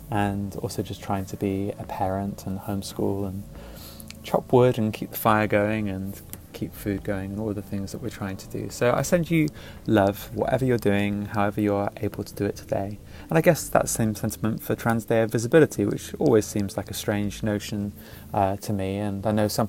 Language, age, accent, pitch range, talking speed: English, 20-39, British, 100-115 Hz, 215 wpm